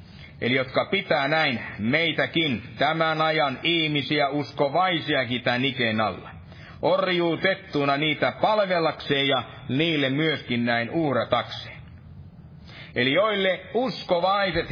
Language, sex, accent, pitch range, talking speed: Finnish, male, native, 130-180 Hz, 90 wpm